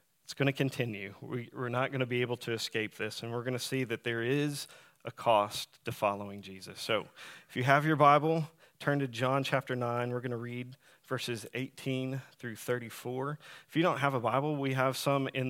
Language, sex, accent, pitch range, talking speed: English, male, American, 115-140 Hz, 215 wpm